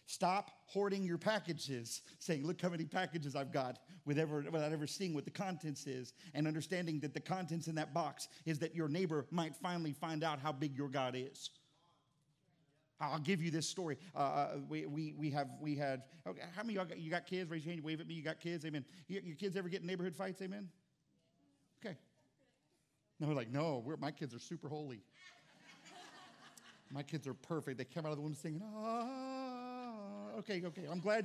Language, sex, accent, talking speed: English, male, American, 200 wpm